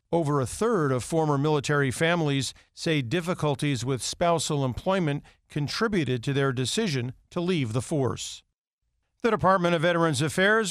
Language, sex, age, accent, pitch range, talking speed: English, male, 50-69, American, 135-175 Hz, 140 wpm